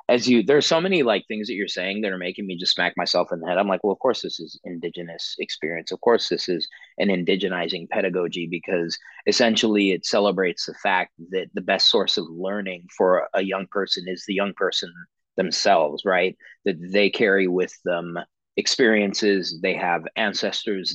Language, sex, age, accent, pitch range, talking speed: English, male, 30-49, American, 90-120 Hz, 190 wpm